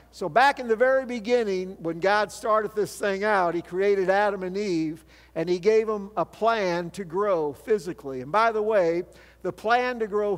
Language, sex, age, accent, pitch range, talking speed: English, male, 50-69, American, 175-225 Hz, 195 wpm